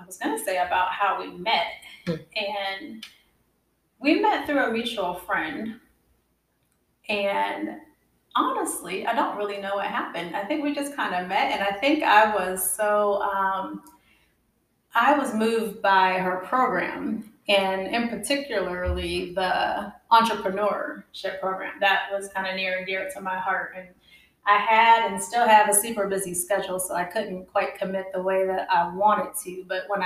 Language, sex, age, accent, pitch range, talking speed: English, female, 30-49, American, 185-215 Hz, 165 wpm